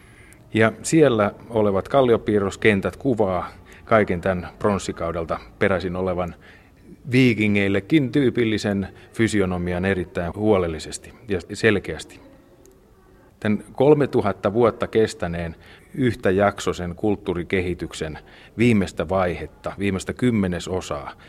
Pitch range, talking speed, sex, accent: 90-105 Hz, 80 wpm, male, native